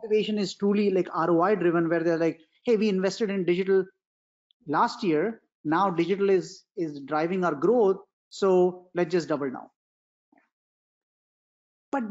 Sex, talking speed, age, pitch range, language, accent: male, 140 wpm, 30-49, 180-245 Hz, English, Indian